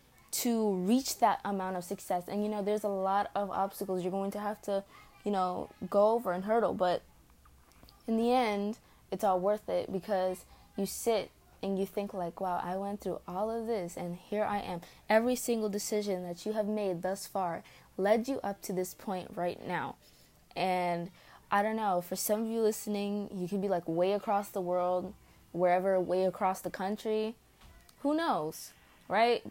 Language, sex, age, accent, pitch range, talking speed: English, female, 20-39, American, 180-210 Hz, 190 wpm